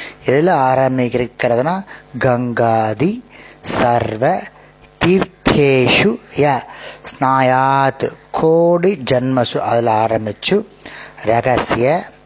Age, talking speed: 30-49, 60 wpm